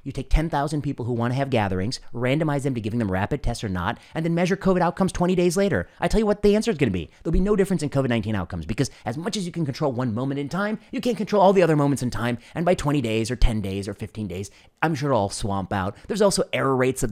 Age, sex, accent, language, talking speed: 30-49, male, American, English, 300 wpm